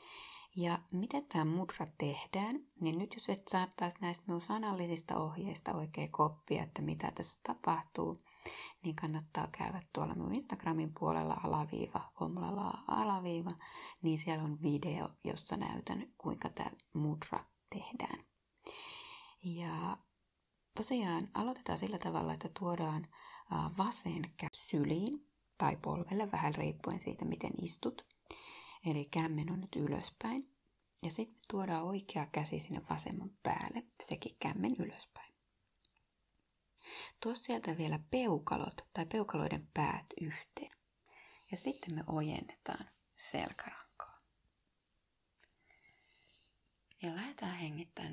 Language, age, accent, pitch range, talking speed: Finnish, 30-49, native, 155-210 Hz, 110 wpm